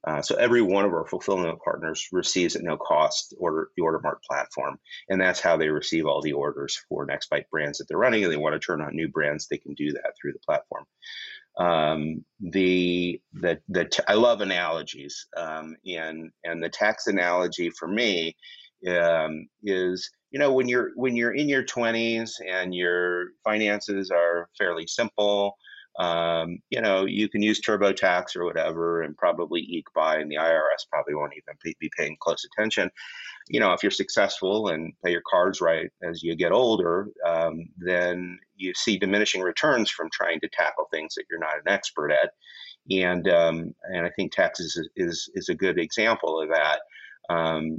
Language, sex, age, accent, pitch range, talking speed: English, male, 30-49, American, 85-105 Hz, 185 wpm